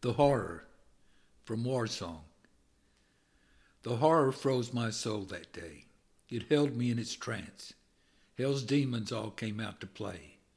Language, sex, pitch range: English, male, 105-130 Hz